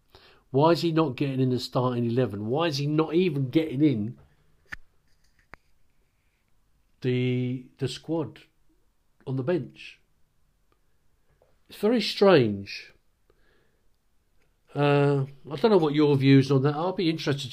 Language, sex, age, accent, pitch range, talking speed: English, male, 50-69, British, 110-140 Hz, 130 wpm